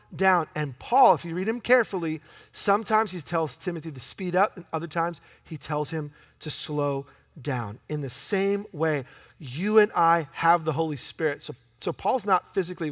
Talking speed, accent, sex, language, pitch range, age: 185 wpm, American, male, English, 140-190 Hz, 40-59